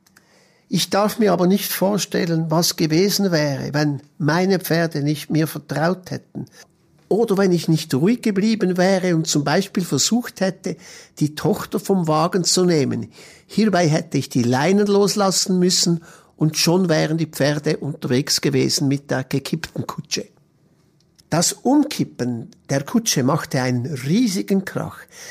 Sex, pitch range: male, 150-195 Hz